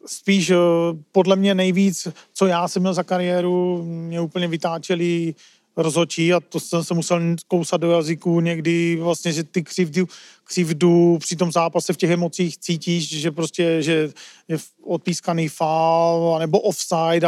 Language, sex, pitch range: Czech, male, 165-180 Hz